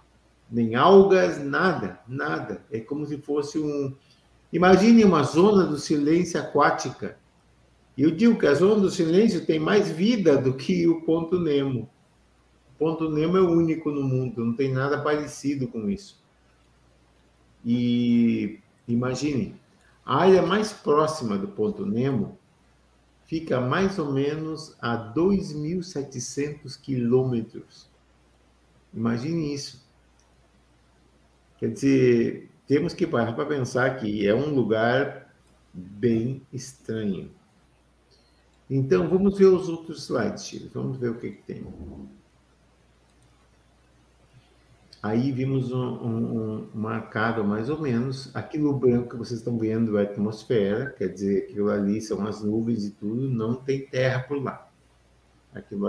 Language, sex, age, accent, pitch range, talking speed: Portuguese, male, 50-69, Brazilian, 105-150 Hz, 125 wpm